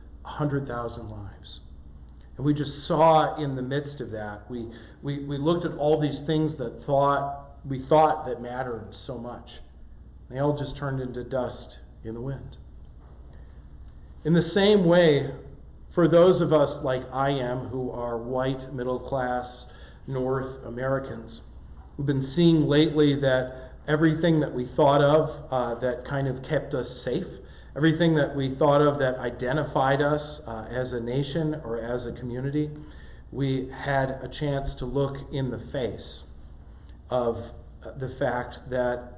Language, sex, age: English, male, 40-59